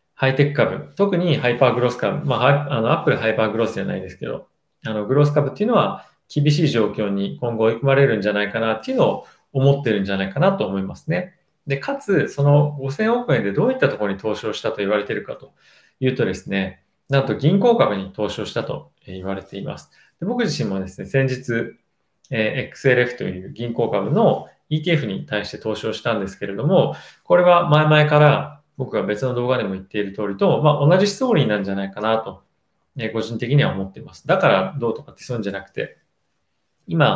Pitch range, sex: 105-145 Hz, male